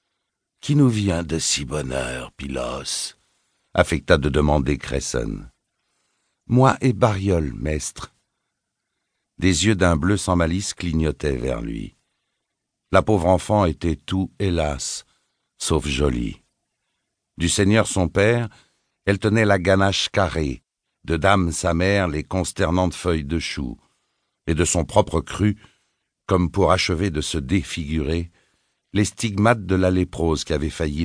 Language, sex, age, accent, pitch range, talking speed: French, male, 60-79, French, 80-105 Hz, 140 wpm